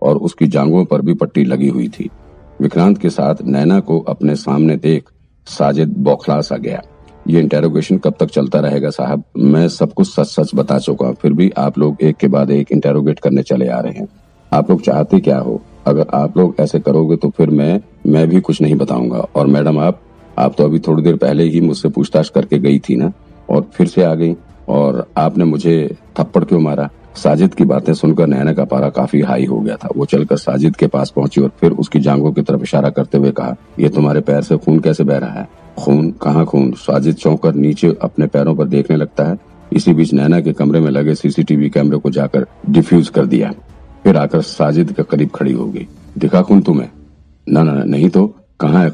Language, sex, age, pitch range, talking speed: Hindi, male, 50-69, 70-80 Hz, 175 wpm